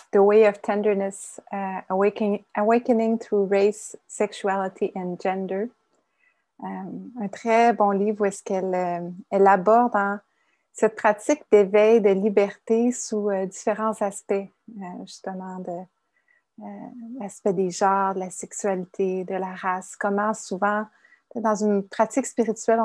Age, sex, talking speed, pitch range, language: 30-49, female, 135 wpm, 195-225 Hz, English